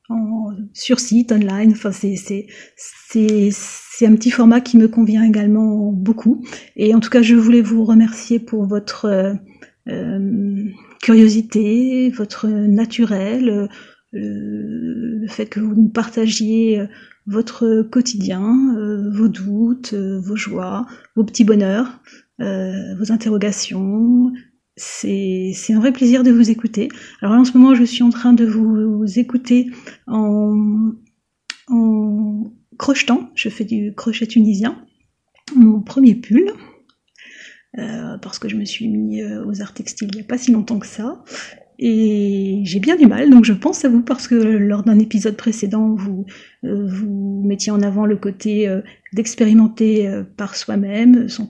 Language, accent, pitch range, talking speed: French, French, 205-235 Hz, 155 wpm